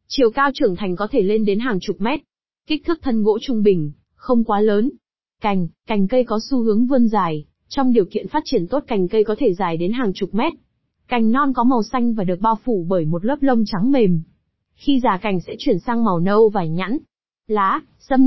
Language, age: Vietnamese, 20-39